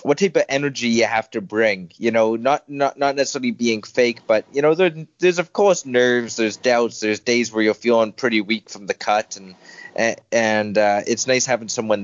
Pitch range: 105-125 Hz